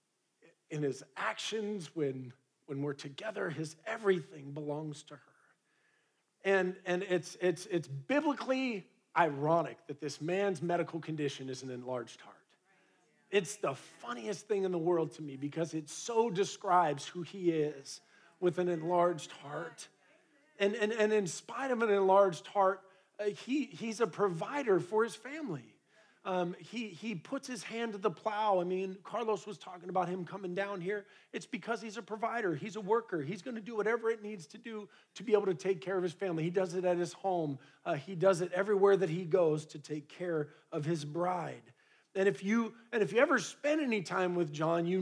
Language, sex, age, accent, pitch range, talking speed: English, male, 40-59, American, 170-210 Hz, 190 wpm